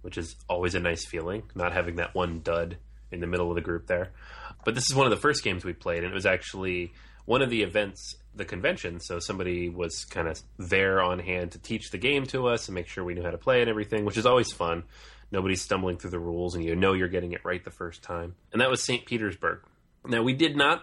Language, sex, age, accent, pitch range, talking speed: English, male, 30-49, American, 90-115 Hz, 260 wpm